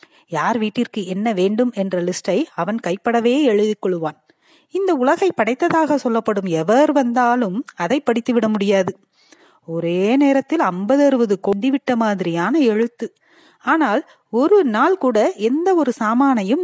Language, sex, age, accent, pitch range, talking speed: Tamil, female, 30-49, native, 185-265 Hz, 120 wpm